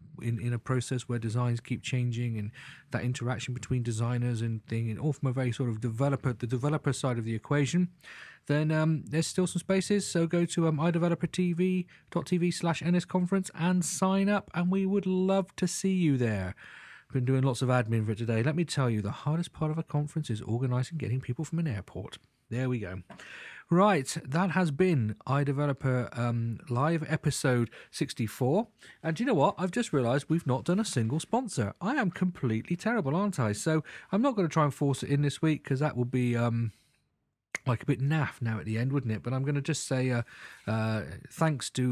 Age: 40-59